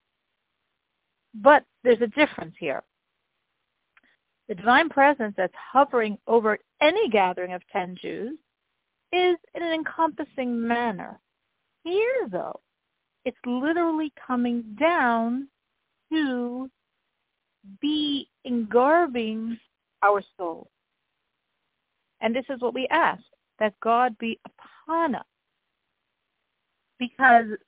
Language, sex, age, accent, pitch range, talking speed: English, female, 50-69, American, 210-280 Hz, 95 wpm